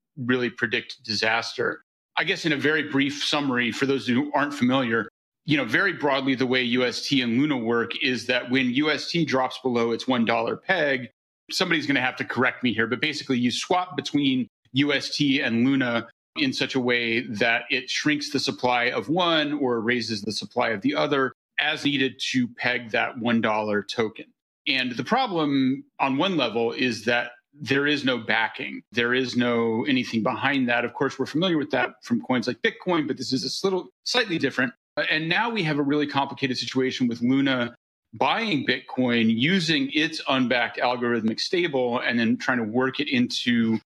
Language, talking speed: English, 185 wpm